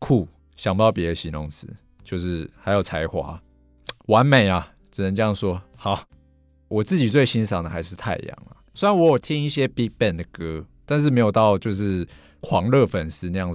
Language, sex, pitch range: Chinese, male, 85-120 Hz